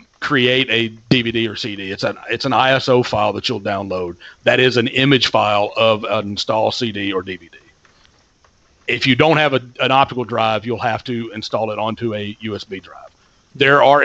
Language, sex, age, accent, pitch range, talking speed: English, male, 40-59, American, 110-130 Hz, 190 wpm